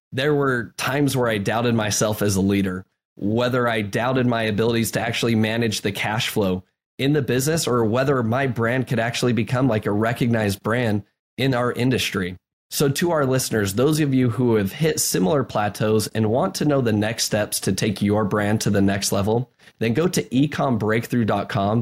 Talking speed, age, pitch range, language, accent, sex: 190 wpm, 20-39, 105-130 Hz, English, American, male